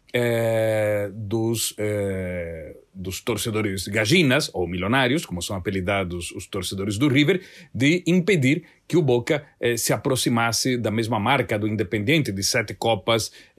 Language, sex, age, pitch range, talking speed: Portuguese, male, 40-59, 105-135 Hz, 125 wpm